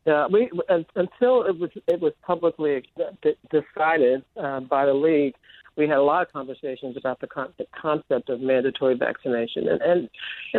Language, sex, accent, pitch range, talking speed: English, male, American, 125-155 Hz, 185 wpm